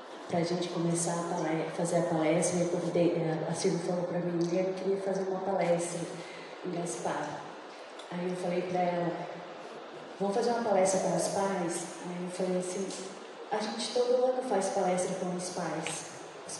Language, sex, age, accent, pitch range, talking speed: Portuguese, female, 20-39, Brazilian, 175-215 Hz, 175 wpm